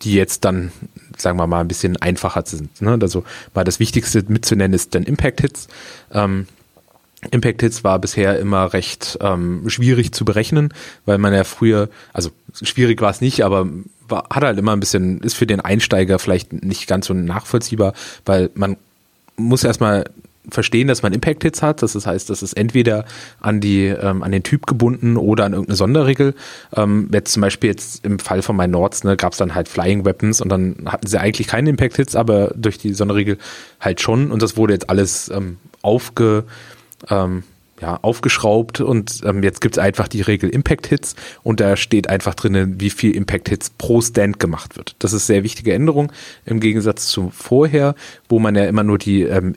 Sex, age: male, 30-49